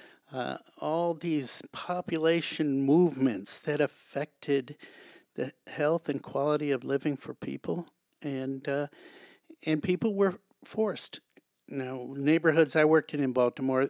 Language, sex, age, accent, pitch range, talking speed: English, male, 50-69, American, 135-165 Hz, 120 wpm